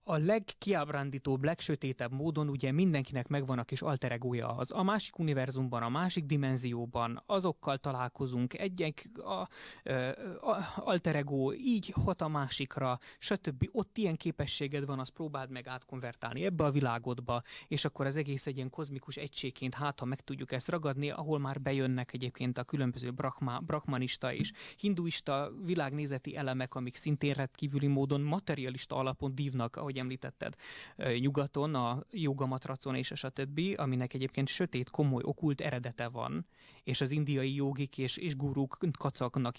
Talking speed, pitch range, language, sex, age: 140 wpm, 125-150 Hz, Hungarian, male, 20-39